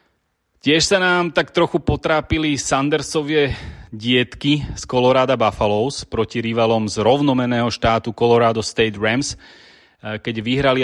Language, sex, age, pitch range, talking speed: Slovak, male, 30-49, 105-125 Hz, 115 wpm